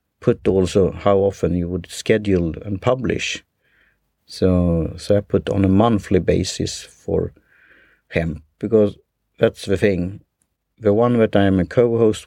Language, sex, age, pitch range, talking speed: English, male, 50-69, 90-105 Hz, 140 wpm